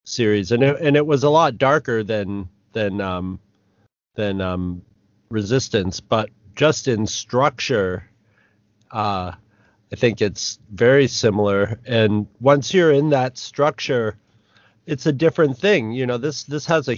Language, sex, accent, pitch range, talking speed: English, male, American, 105-135 Hz, 140 wpm